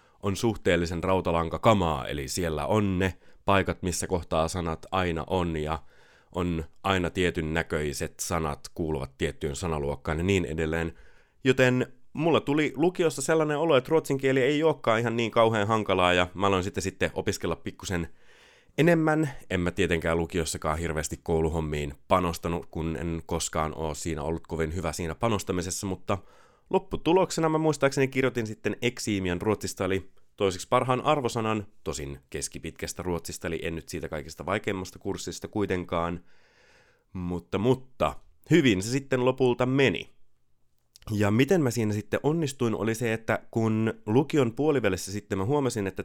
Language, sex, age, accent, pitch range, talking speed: Finnish, male, 30-49, native, 85-120 Hz, 140 wpm